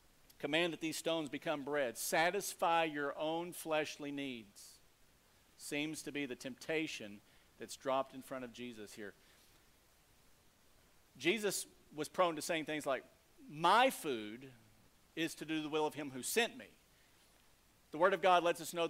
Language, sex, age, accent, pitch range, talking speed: English, male, 50-69, American, 135-170 Hz, 155 wpm